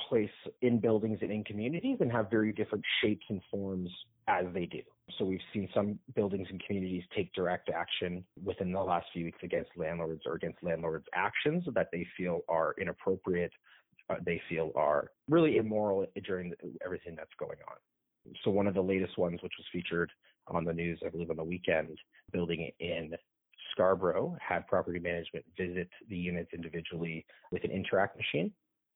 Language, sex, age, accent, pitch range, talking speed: English, male, 30-49, American, 85-100 Hz, 175 wpm